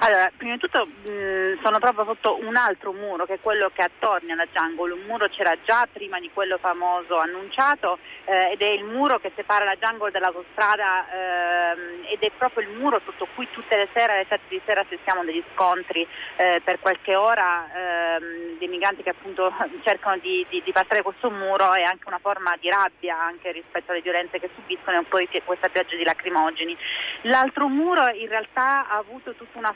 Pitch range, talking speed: 180-220 Hz, 195 wpm